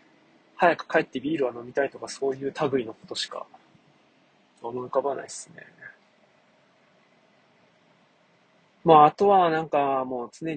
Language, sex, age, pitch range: Japanese, male, 20-39, 135-180 Hz